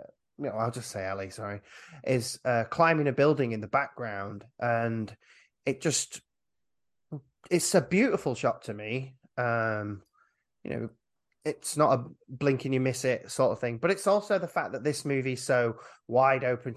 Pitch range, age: 110-140 Hz, 20-39